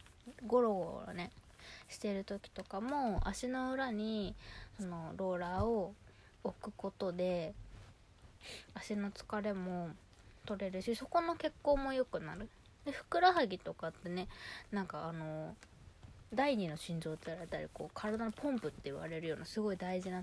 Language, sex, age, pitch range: Japanese, female, 20-39, 175-245 Hz